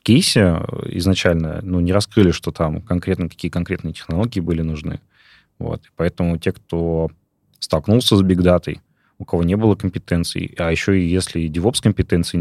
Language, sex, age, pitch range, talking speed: Russian, male, 20-39, 85-100 Hz, 150 wpm